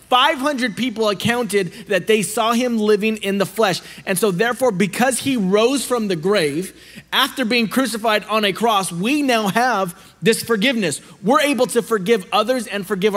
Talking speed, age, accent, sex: 175 wpm, 30-49, American, male